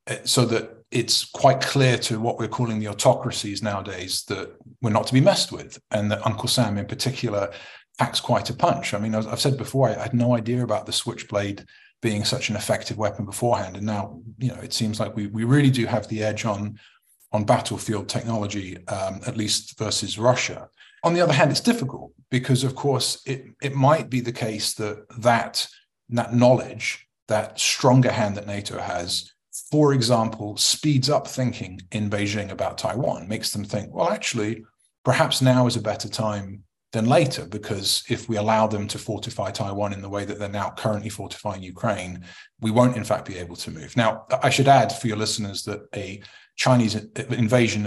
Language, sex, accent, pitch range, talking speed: English, male, British, 105-125 Hz, 195 wpm